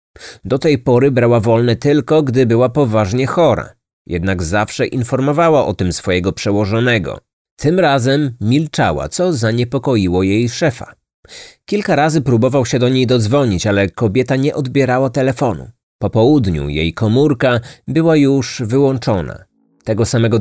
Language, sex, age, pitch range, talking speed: Polish, male, 30-49, 105-135 Hz, 130 wpm